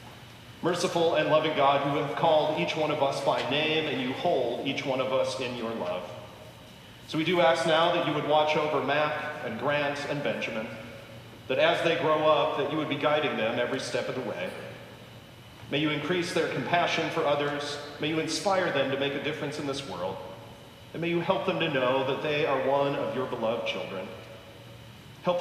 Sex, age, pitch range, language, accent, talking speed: male, 40-59, 125-160 Hz, English, American, 210 wpm